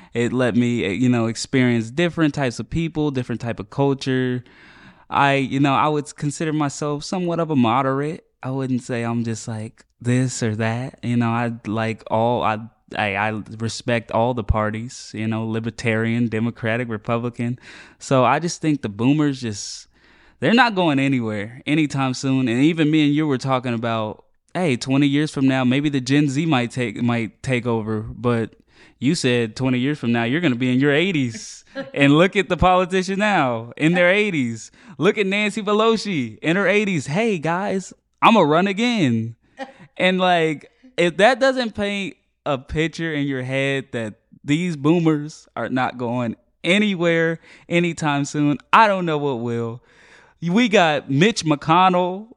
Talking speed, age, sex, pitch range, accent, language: 175 wpm, 10-29, male, 120-165 Hz, American, English